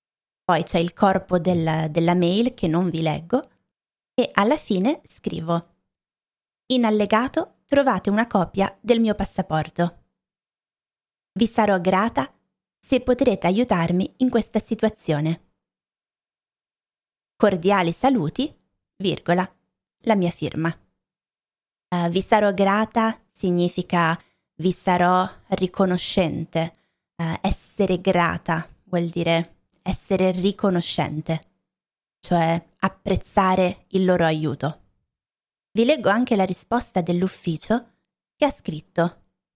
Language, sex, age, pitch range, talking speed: Italian, female, 20-39, 170-225 Hz, 100 wpm